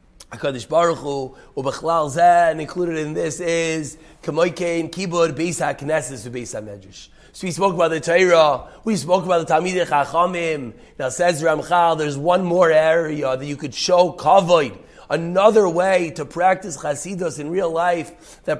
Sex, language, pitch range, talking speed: male, English, 150-180 Hz, 140 wpm